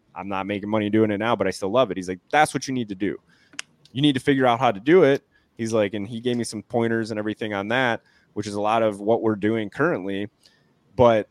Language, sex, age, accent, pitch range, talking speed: English, male, 20-39, American, 100-125 Hz, 270 wpm